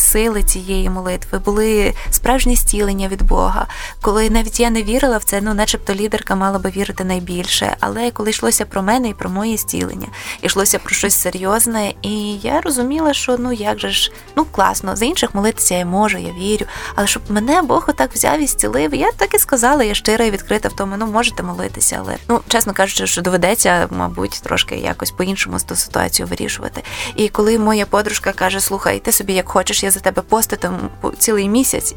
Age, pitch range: 20-39, 190-230 Hz